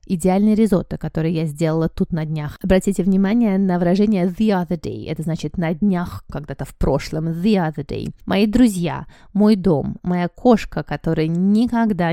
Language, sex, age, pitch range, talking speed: Russian, female, 20-39, 165-210 Hz, 165 wpm